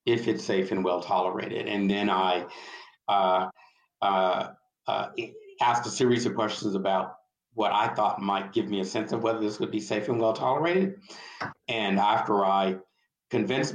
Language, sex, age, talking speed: English, male, 50-69, 170 wpm